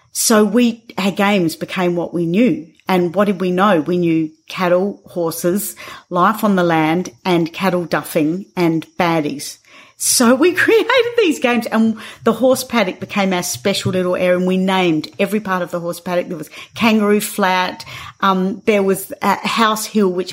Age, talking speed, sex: 40-59, 175 wpm, female